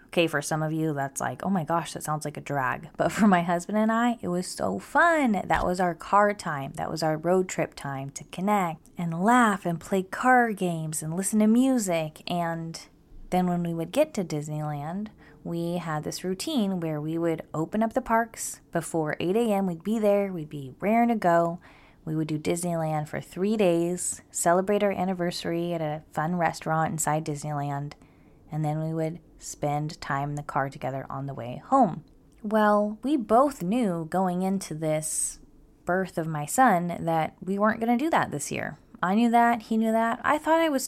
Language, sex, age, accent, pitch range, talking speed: English, female, 20-39, American, 155-205 Hz, 205 wpm